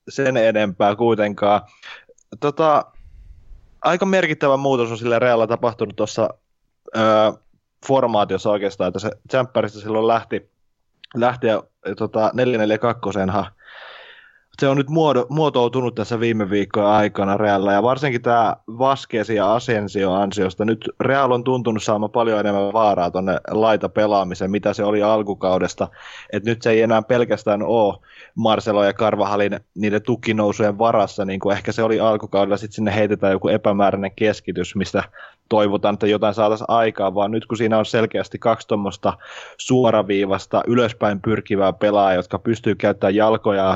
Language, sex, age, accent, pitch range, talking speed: Finnish, male, 20-39, native, 100-115 Hz, 140 wpm